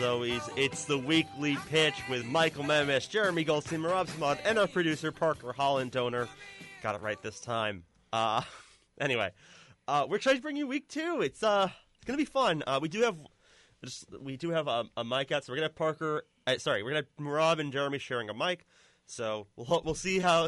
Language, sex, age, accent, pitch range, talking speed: English, male, 30-49, American, 120-165 Hz, 210 wpm